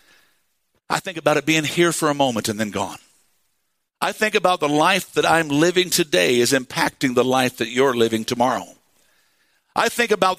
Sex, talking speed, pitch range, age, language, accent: male, 185 wpm, 165-250 Hz, 50-69, English, American